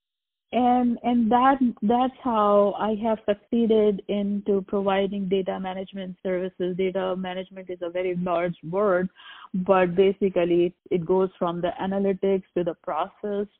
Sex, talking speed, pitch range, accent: female, 130 wpm, 185-210 Hz, Indian